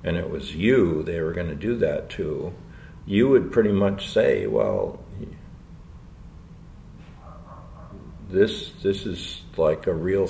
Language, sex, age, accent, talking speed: English, male, 60-79, American, 135 wpm